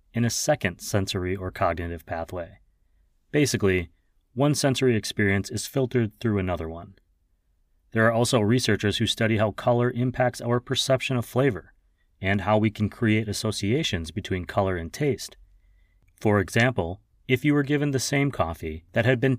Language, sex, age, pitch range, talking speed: English, male, 30-49, 90-120 Hz, 160 wpm